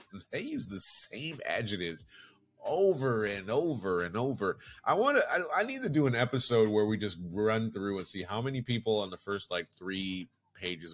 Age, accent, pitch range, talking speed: 30-49, American, 90-125 Hz, 195 wpm